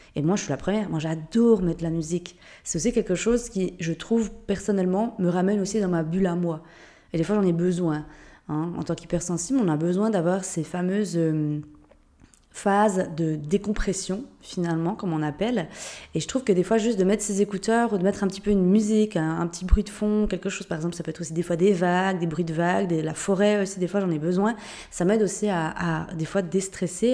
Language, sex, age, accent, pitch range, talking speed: French, female, 20-39, French, 170-220 Hz, 240 wpm